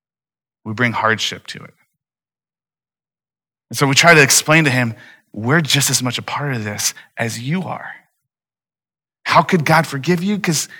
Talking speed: 165 wpm